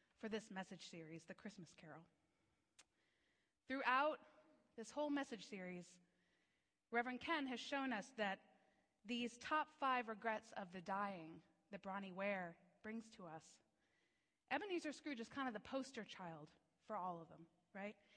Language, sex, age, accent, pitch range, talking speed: English, female, 30-49, American, 195-245 Hz, 145 wpm